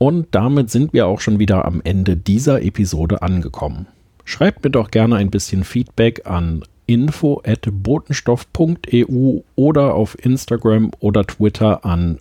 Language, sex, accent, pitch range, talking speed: German, male, German, 100-130 Hz, 135 wpm